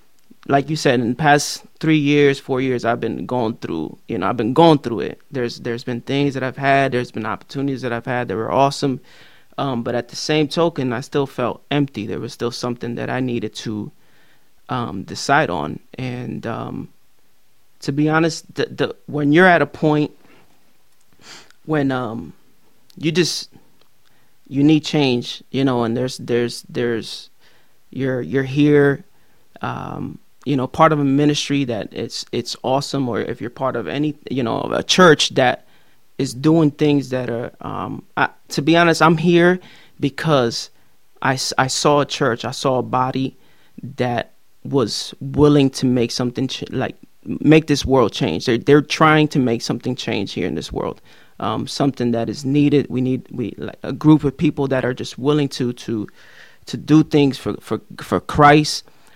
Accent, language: American, English